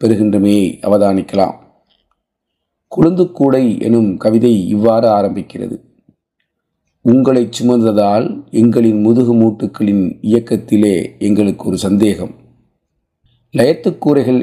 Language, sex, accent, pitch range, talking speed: Tamil, male, native, 105-120 Hz, 70 wpm